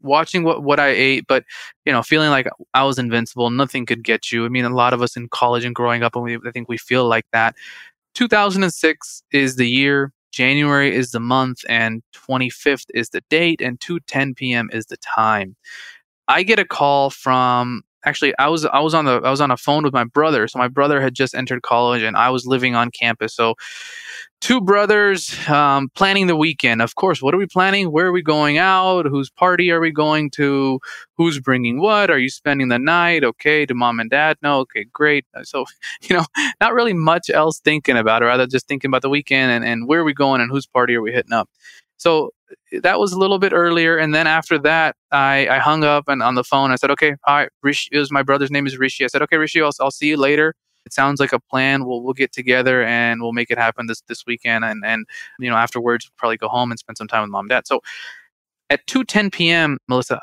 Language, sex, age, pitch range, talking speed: English, male, 20-39, 120-155 Hz, 240 wpm